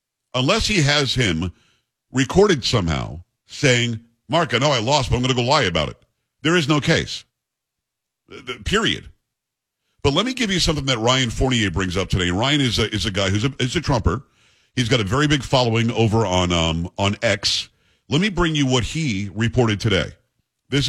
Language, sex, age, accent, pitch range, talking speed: English, male, 50-69, American, 110-140 Hz, 200 wpm